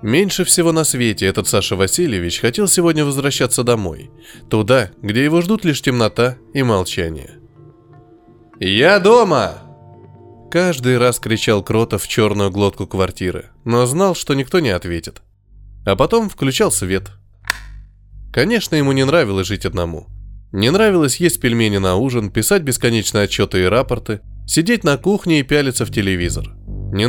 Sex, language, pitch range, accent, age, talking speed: male, Russian, 100-140 Hz, native, 20-39, 140 wpm